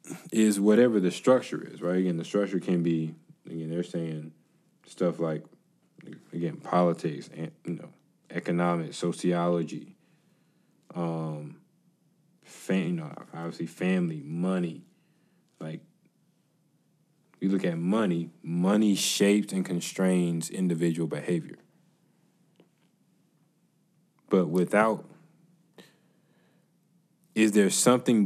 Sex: male